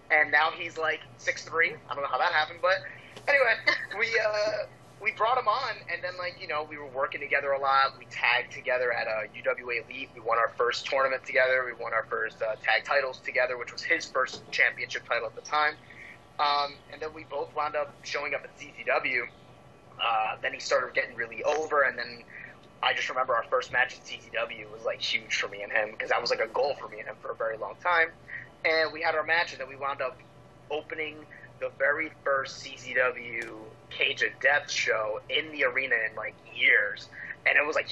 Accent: American